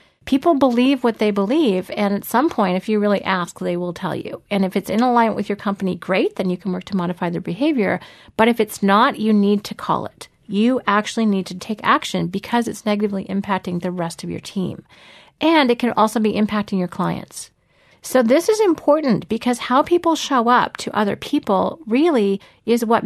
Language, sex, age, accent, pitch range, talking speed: English, female, 40-59, American, 195-245 Hz, 210 wpm